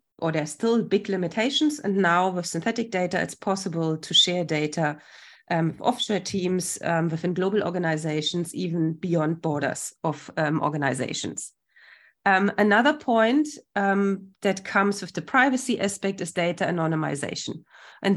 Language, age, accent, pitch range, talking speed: English, 30-49, German, 170-200 Hz, 145 wpm